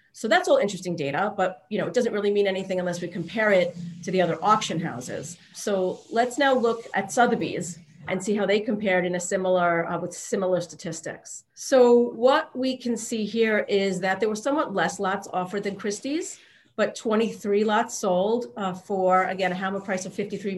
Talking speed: 200 wpm